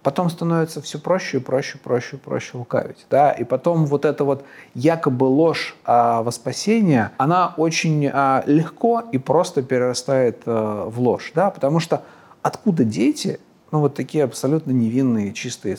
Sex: male